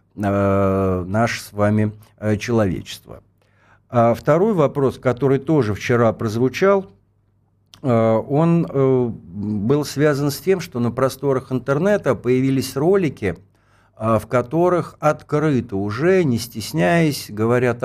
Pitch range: 105-145 Hz